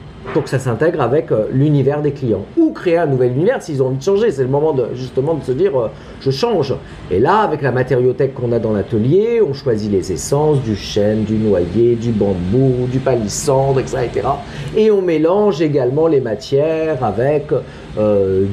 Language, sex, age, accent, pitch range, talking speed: French, male, 50-69, French, 125-175 Hz, 190 wpm